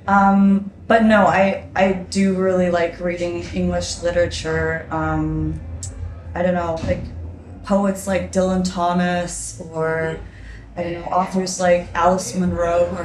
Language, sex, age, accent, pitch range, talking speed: Danish, female, 20-39, American, 110-190 Hz, 135 wpm